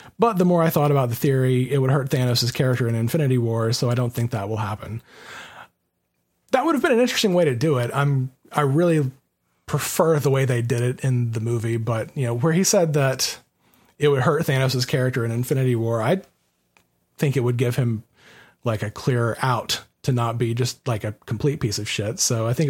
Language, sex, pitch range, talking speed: English, male, 115-145 Hz, 220 wpm